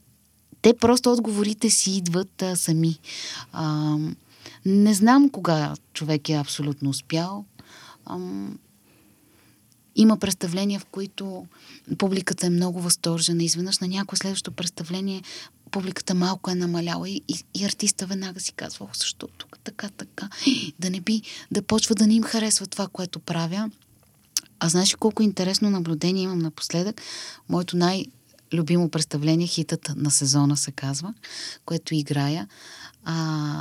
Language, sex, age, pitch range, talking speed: Bulgarian, female, 20-39, 160-200 Hz, 130 wpm